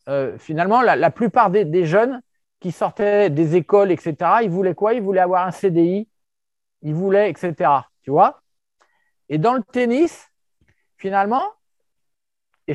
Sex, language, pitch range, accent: male, French, 170-225 Hz, French